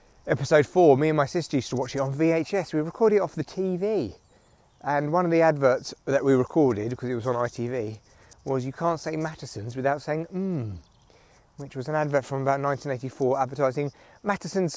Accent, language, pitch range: British, English, 130-160 Hz